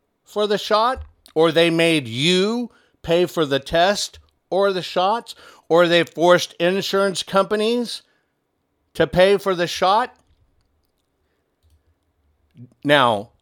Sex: male